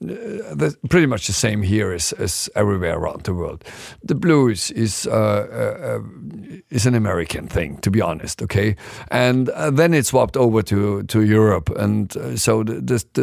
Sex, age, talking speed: male, 50-69, 185 wpm